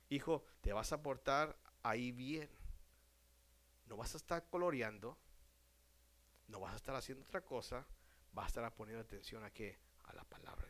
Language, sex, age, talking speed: Spanish, male, 50-69, 165 wpm